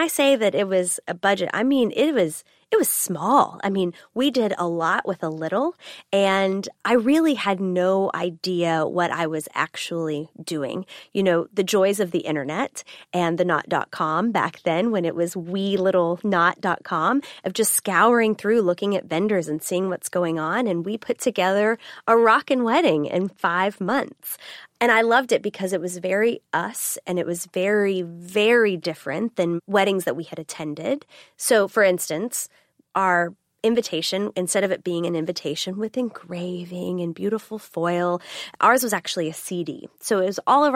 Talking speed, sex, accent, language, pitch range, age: 180 wpm, female, American, English, 175-225 Hz, 20-39